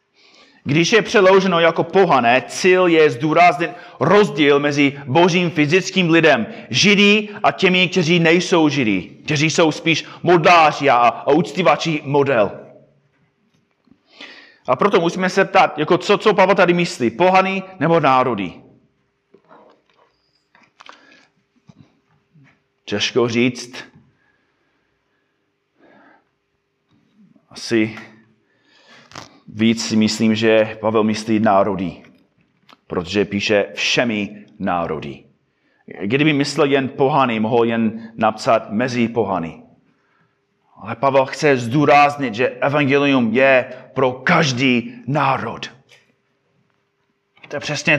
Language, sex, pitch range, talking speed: Czech, male, 130-175 Hz, 95 wpm